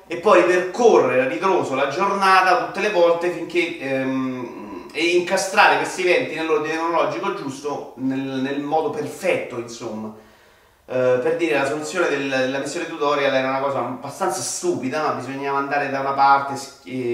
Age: 30-49